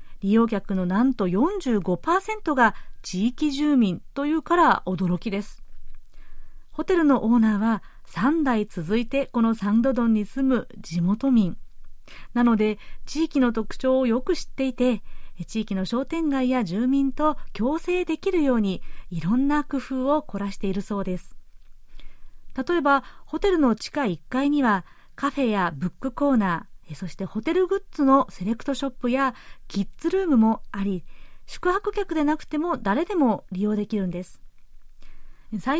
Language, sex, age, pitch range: Japanese, female, 40-59, 205-285 Hz